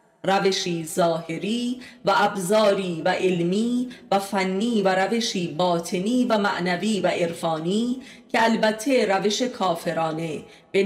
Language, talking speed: Persian, 110 wpm